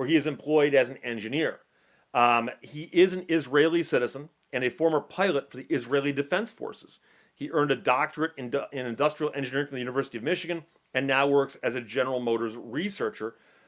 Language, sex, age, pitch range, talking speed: English, male, 40-59, 125-160 Hz, 195 wpm